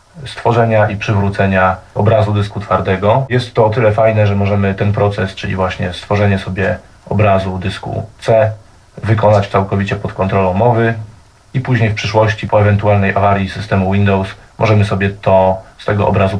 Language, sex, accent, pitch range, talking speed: Polish, male, native, 95-110 Hz, 155 wpm